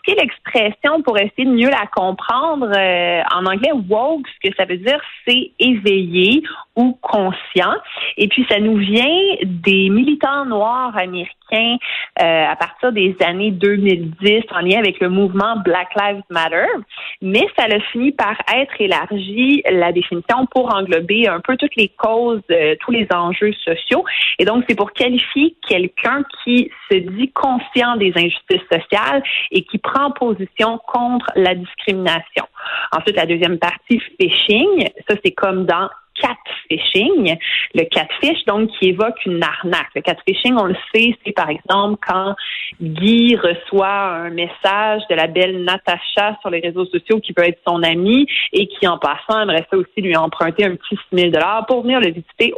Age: 30-49